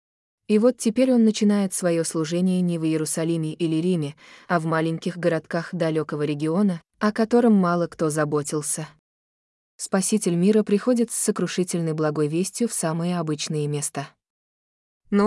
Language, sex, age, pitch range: Russian, female, 20-39, 155-200 Hz